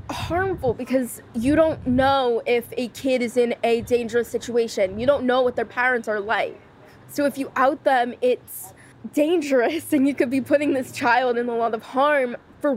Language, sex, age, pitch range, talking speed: English, female, 20-39, 230-280 Hz, 195 wpm